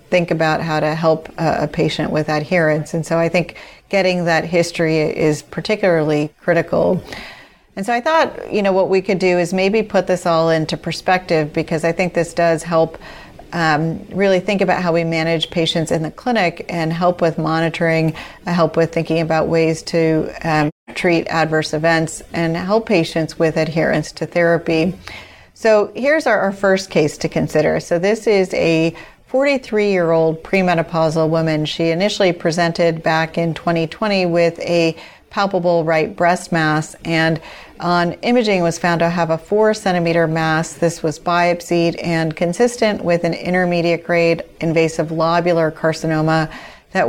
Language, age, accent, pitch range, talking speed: English, 40-59, American, 160-180 Hz, 160 wpm